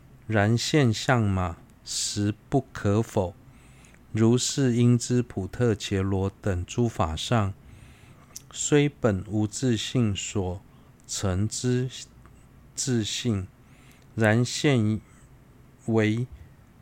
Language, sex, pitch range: Chinese, male, 105-130 Hz